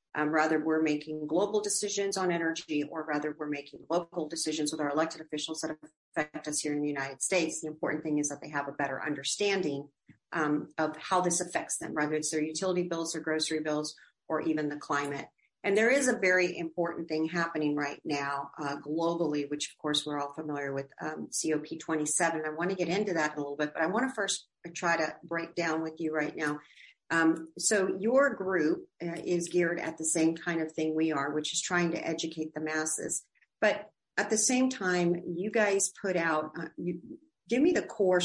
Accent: American